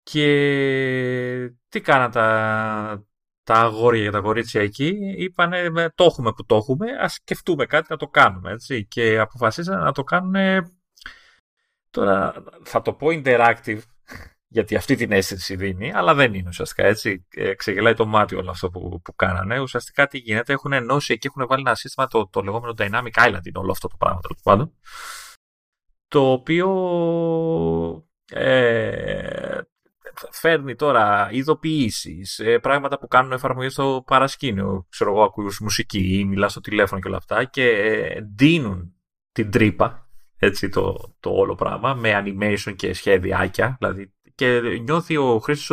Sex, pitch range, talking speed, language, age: male, 105-145 Hz, 145 wpm, Greek, 30-49